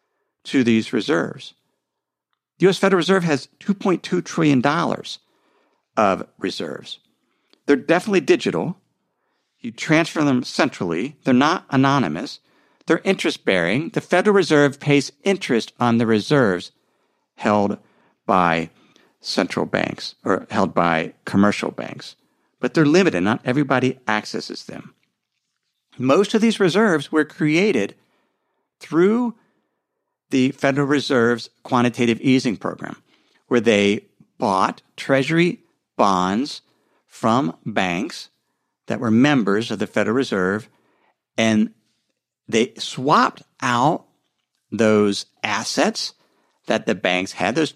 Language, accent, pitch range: English, American, 115-180 Hz